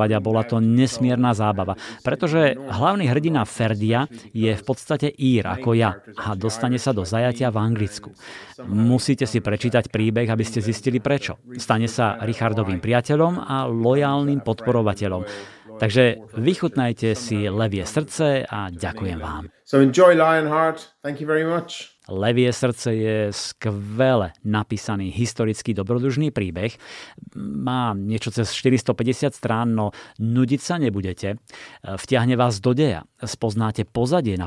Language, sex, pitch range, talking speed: Slovak, male, 105-130 Hz, 120 wpm